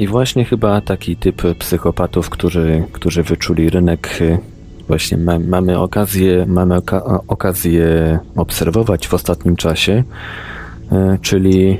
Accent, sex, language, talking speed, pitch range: native, male, Polish, 95 wpm, 85-95 Hz